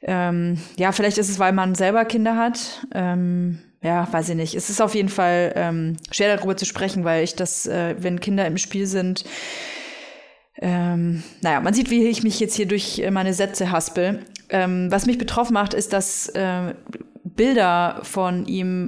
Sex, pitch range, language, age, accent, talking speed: female, 180-220 Hz, German, 30-49, German, 185 wpm